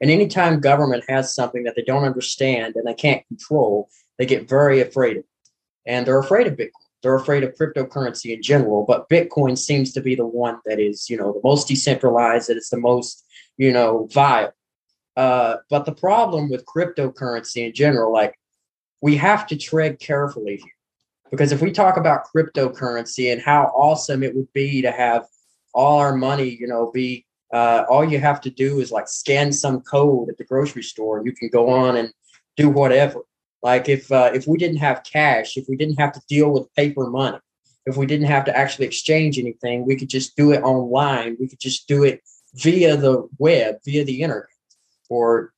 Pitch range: 125-145 Hz